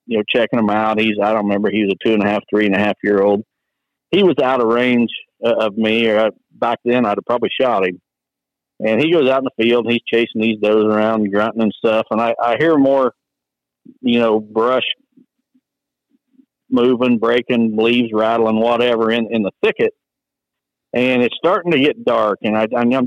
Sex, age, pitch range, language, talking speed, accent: male, 50-69, 110-130 Hz, English, 200 wpm, American